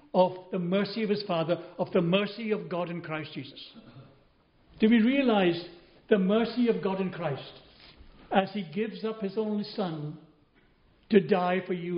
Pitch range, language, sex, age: 175-210 Hz, English, male, 60-79